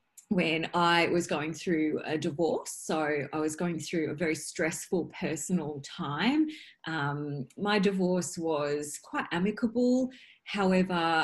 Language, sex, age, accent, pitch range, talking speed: English, female, 30-49, Australian, 155-195 Hz, 130 wpm